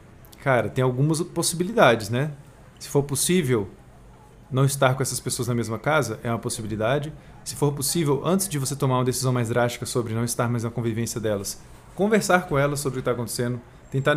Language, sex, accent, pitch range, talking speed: Portuguese, male, Brazilian, 120-150 Hz, 195 wpm